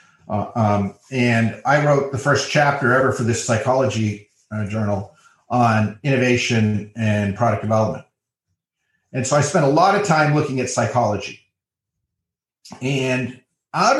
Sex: male